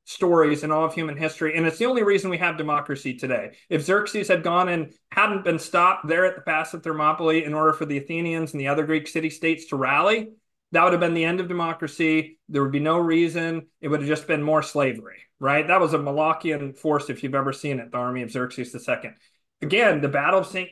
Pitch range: 145-185 Hz